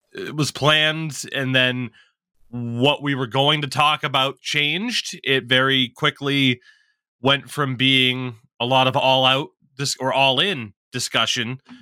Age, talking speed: 20-39, 140 wpm